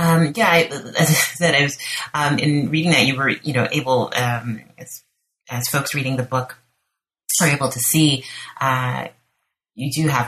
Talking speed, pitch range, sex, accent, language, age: 185 wpm, 115-145 Hz, female, American, English, 30-49